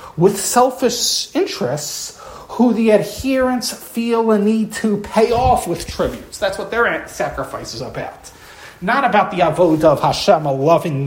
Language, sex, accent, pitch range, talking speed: English, male, American, 145-225 Hz, 150 wpm